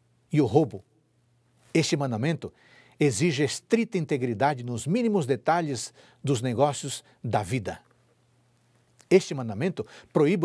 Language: Portuguese